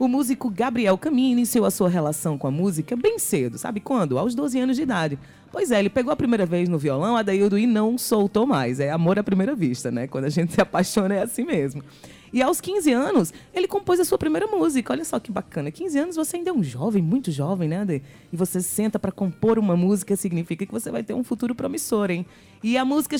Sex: female